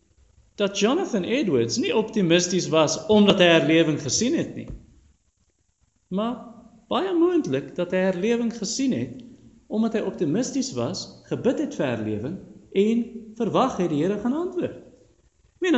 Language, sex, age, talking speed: English, male, 50-69, 140 wpm